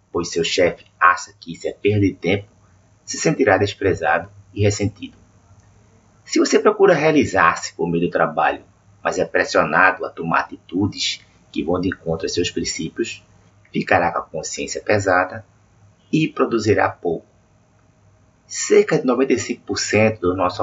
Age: 30-49